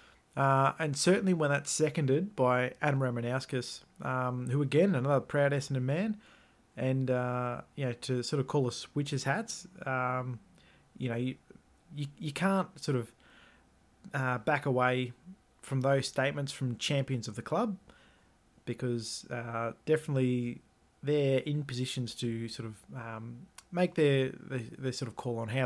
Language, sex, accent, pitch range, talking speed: English, male, Australian, 120-145 Hz, 155 wpm